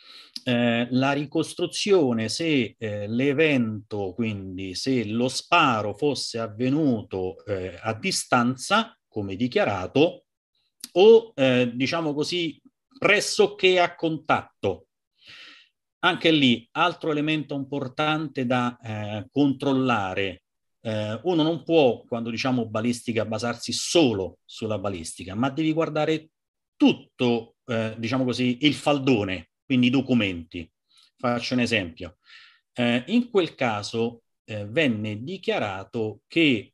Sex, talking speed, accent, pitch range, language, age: male, 105 wpm, native, 110-150 Hz, Italian, 40-59